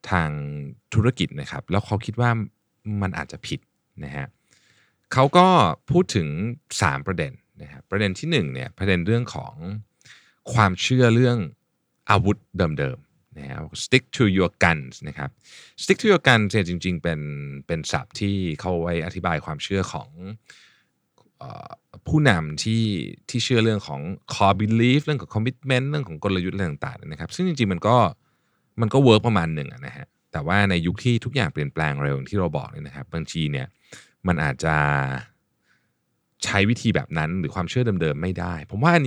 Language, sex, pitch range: Thai, male, 85-120 Hz